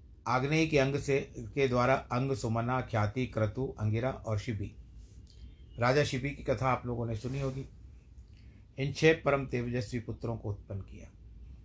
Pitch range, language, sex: 105-130 Hz, Hindi, male